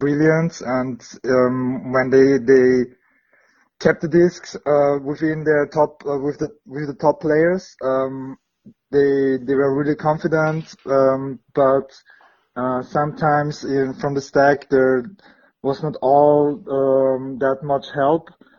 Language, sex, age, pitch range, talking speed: German, male, 30-49, 130-145 Hz, 135 wpm